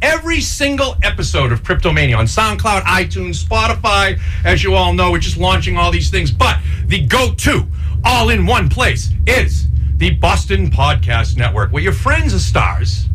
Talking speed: 165 wpm